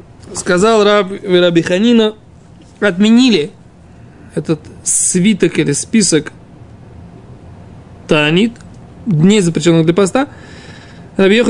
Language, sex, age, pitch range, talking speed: Russian, male, 20-39, 155-200 Hz, 75 wpm